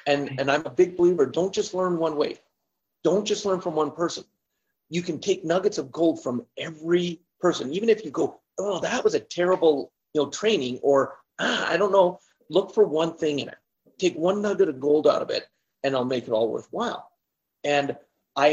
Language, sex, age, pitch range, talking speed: English, male, 40-59, 140-185 Hz, 210 wpm